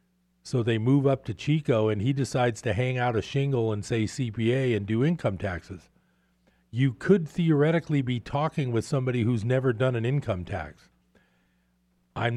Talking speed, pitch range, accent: 170 wpm, 110-140 Hz, American